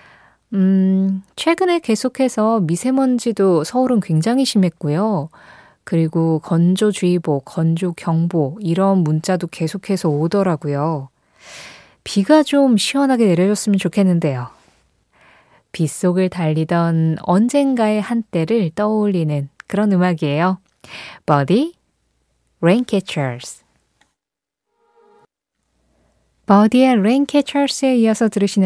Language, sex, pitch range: Korean, female, 160-230 Hz